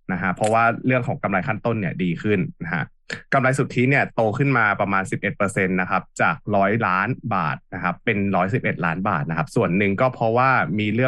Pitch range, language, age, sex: 95-120 Hz, Thai, 20-39, male